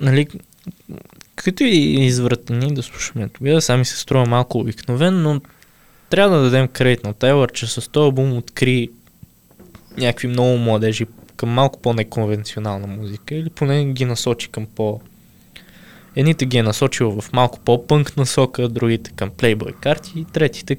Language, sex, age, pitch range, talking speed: Bulgarian, male, 20-39, 110-135 Hz, 145 wpm